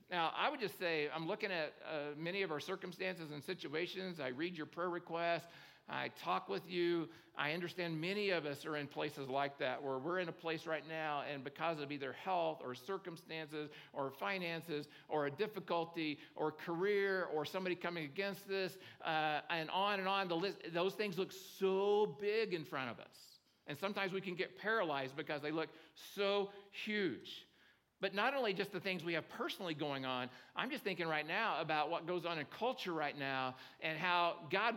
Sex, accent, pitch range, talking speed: male, American, 155-195 Hz, 195 wpm